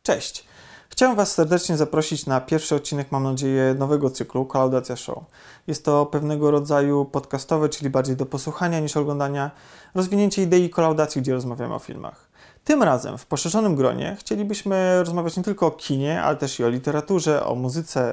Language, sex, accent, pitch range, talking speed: Polish, male, native, 135-160 Hz, 165 wpm